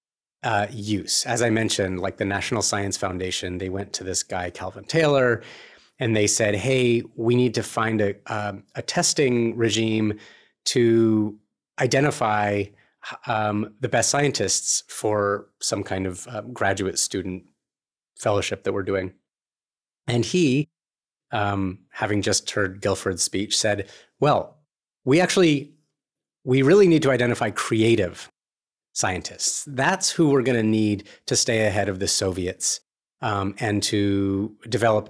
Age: 30-49